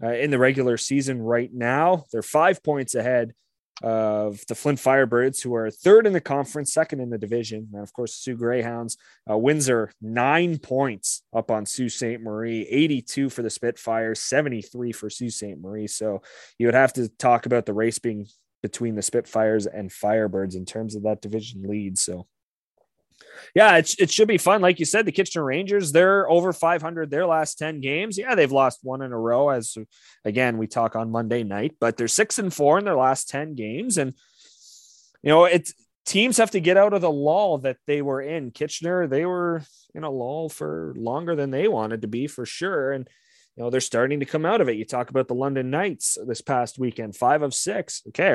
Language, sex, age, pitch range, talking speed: English, male, 20-39, 110-150 Hz, 205 wpm